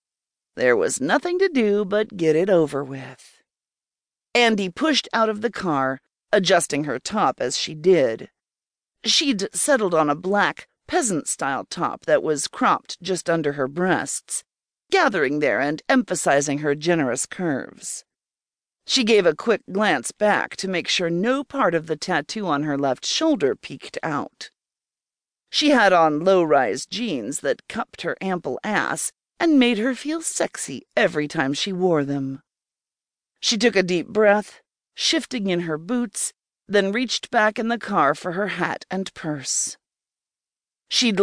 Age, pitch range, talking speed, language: 50-69, 155-240 Hz, 150 wpm, English